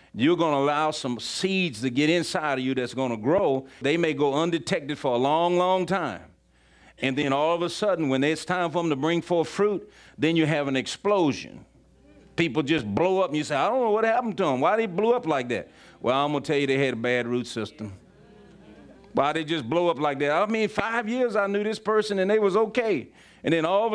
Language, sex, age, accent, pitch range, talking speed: English, male, 40-59, American, 140-180 Hz, 250 wpm